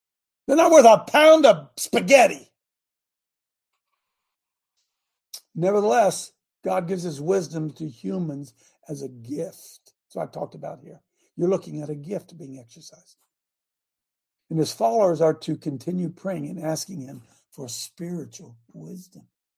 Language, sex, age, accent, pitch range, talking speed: English, male, 60-79, American, 135-190 Hz, 130 wpm